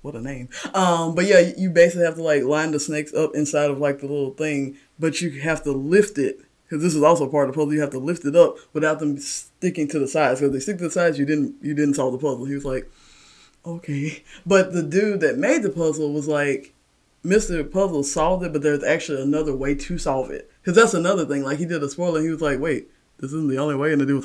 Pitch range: 140-170 Hz